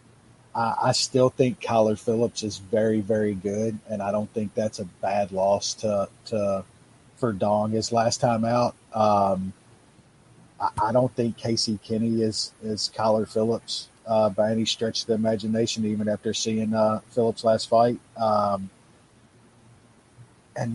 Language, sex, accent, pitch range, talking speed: English, male, American, 110-130 Hz, 150 wpm